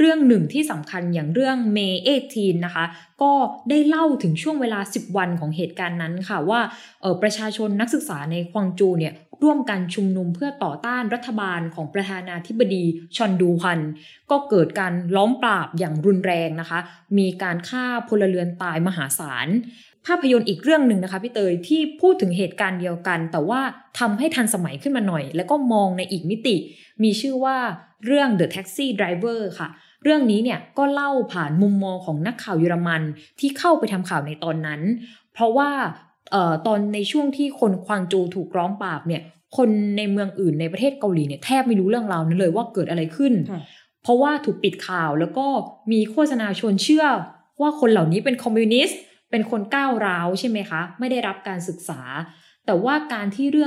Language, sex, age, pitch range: Thai, female, 20-39, 175-245 Hz